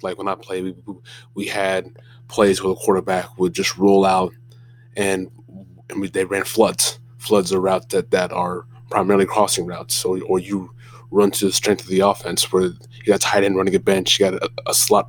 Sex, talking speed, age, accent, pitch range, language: male, 215 wpm, 20-39, American, 100-120 Hz, English